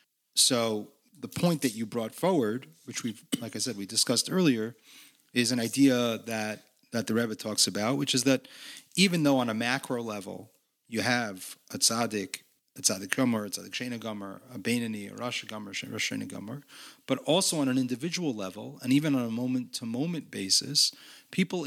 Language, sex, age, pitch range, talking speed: English, male, 40-59, 115-145 Hz, 165 wpm